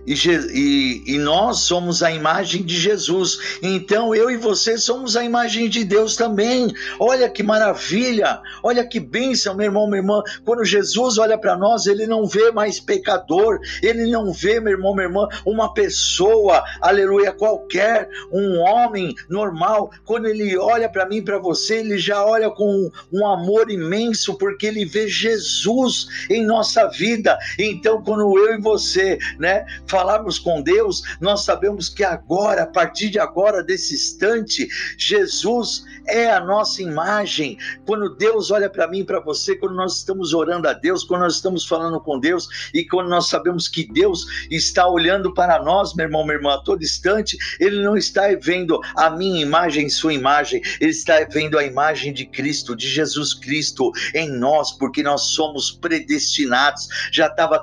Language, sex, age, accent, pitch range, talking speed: Portuguese, male, 50-69, Brazilian, 175-230 Hz, 170 wpm